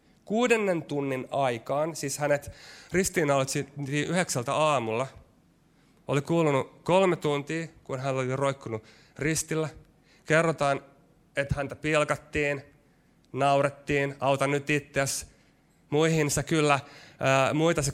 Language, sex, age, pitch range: Finnish, male, 30-49, 130-155 Hz